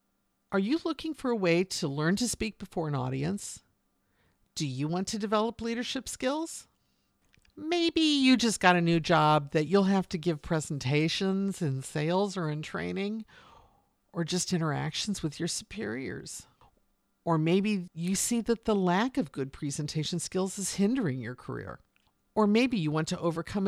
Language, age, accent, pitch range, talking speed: English, 50-69, American, 155-220 Hz, 165 wpm